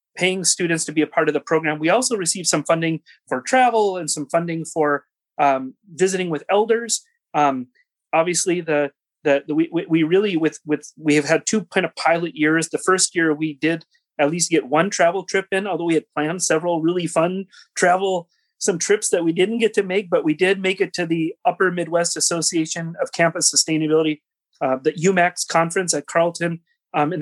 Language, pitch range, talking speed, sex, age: English, 150-180 Hz, 200 wpm, male, 30-49